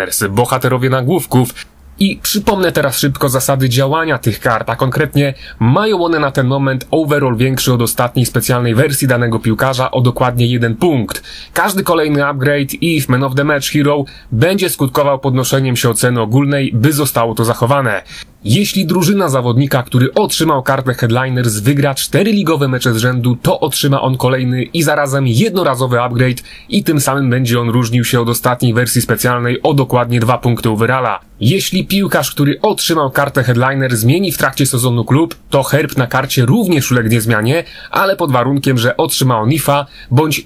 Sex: male